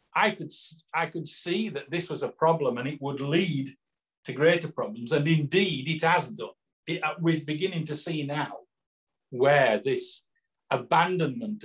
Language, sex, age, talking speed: English, male, 50-69, 155 wpm